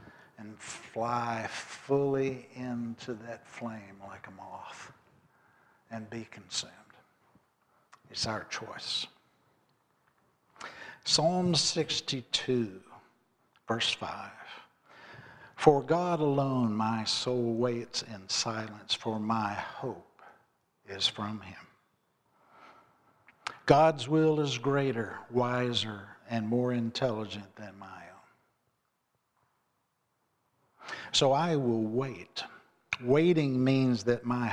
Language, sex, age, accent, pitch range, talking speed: English, male, 60-79, American, 110-140 Hz, 90 wpm